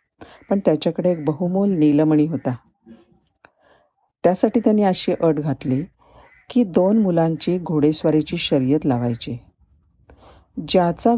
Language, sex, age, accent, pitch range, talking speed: Marathi, female, 50-69, native, 140-185 Hz, 95 wpm